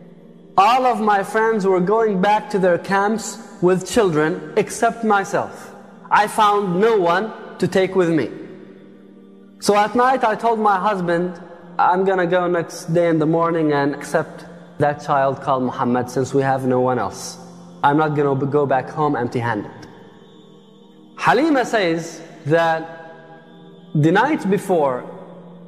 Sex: male